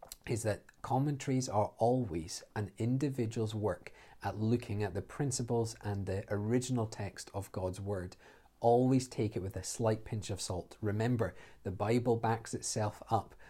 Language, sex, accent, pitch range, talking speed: English, male, British, 100-120 Hz, 155 wpm